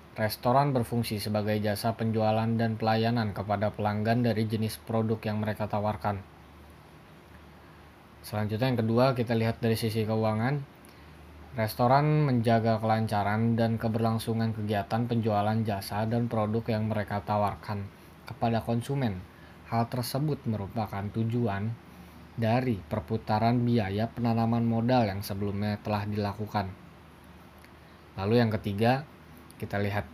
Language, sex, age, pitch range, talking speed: Malay, male, 20-39, 100-115 Hz, 110 wpm